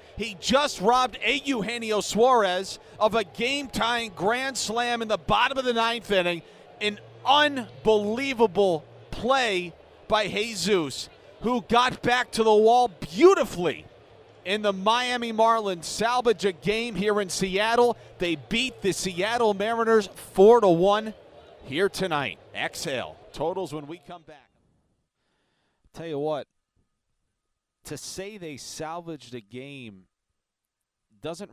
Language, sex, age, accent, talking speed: English, male, 40-59, American, 120 wpm